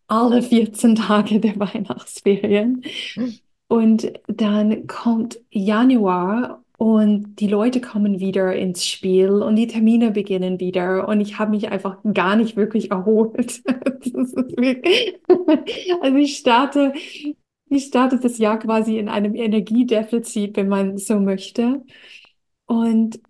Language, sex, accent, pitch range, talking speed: German, female, German, 200-235 Hz, 120 wpm